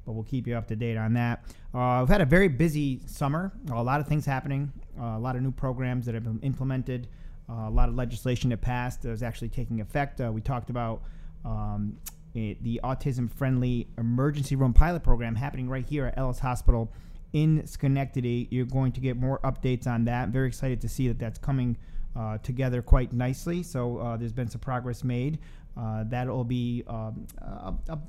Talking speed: 200 wpm